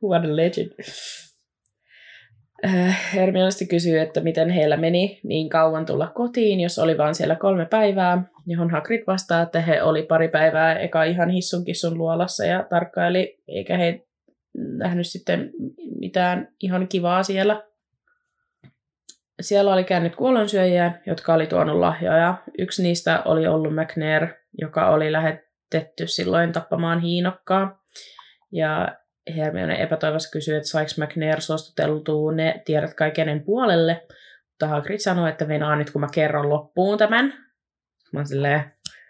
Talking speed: 130 wpm